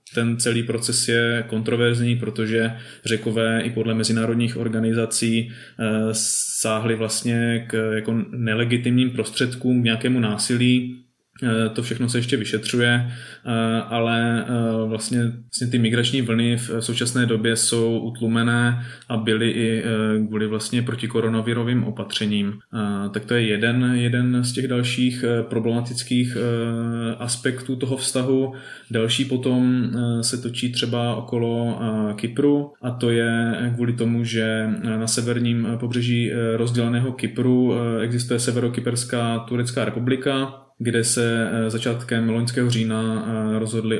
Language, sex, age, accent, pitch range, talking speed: Czech, male, 20-39, native, 110-120 Hz, 110 wpm